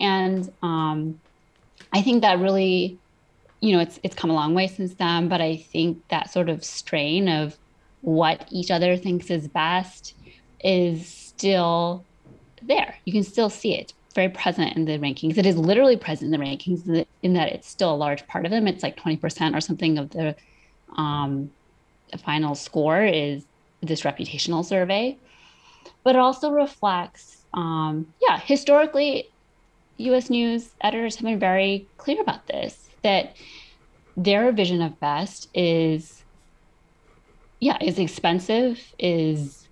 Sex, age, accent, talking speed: female, 30-49, American, 155 wpm